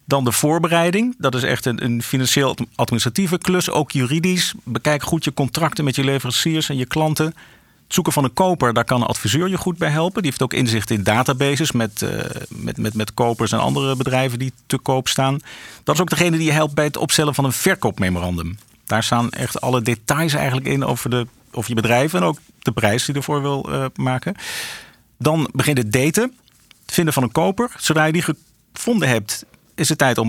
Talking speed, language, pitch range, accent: 210 wpm, Dutch, 125-160 Hz, Dutch